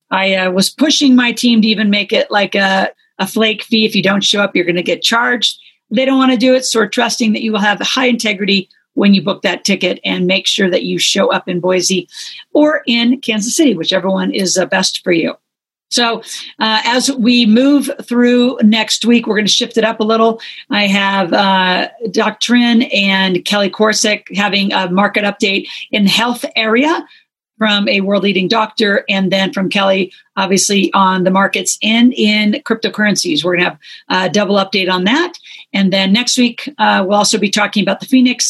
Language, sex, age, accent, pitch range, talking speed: English, female, 40-59, American, 195-230 Hz, 205 wpm